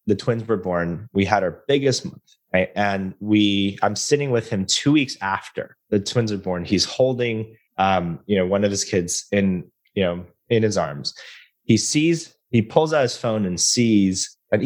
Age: 20-39